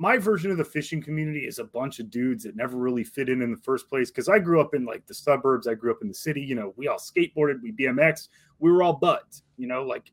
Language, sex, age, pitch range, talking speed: English, male, 30-49, 150-185 Hz, 285 wpm